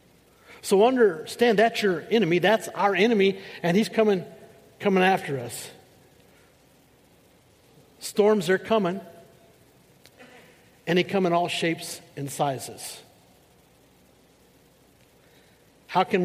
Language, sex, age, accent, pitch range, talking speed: English, male, 50-69, American, 165-220 Hz, 100 wpm